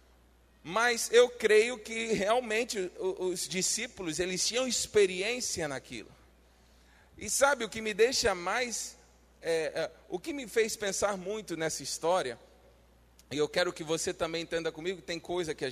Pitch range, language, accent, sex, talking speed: 150-220 Hz, Portuguese, Brazilian, male, 145 wpm